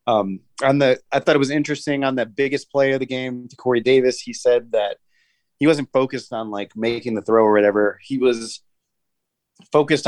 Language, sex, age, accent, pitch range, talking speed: English, male, 30-49, American, 110-135 Hz, 200 wpm